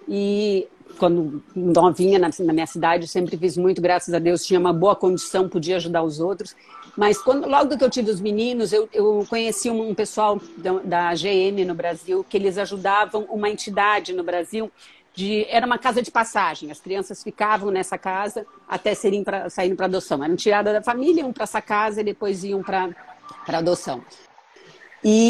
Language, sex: Portuguese, female